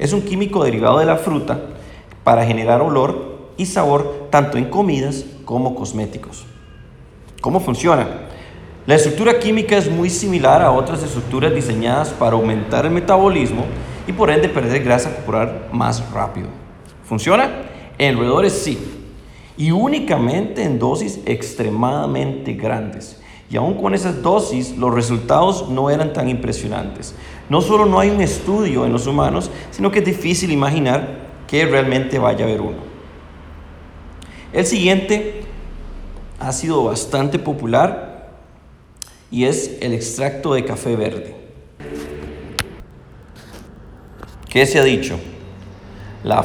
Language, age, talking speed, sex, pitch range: Spanish, 40-59, 130 wpm, male, 110-155 Hz